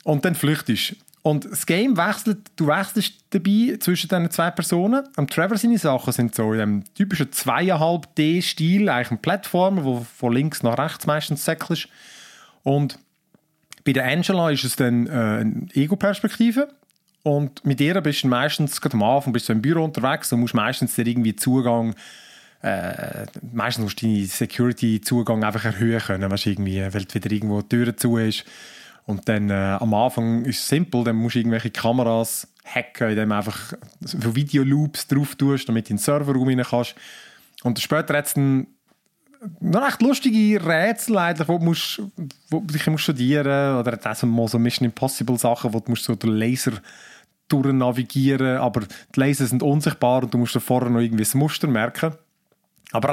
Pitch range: 120-170 Hz